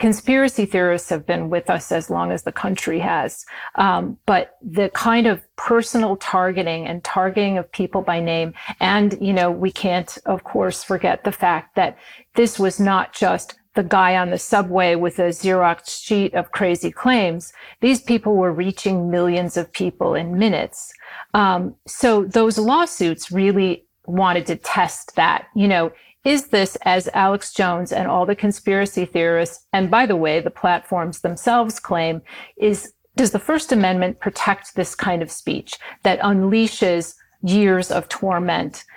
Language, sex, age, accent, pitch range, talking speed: English, female, 40-59, American, 175-210 Hz, 160 wpm